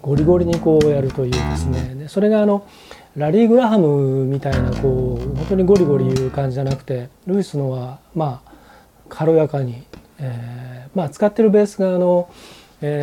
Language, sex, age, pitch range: Japanese, male, 40-59, 130-175 Hz